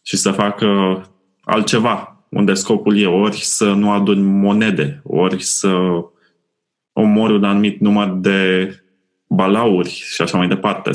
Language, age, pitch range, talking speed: Romanian, 20-39, 95-110 Hz, 130 wpm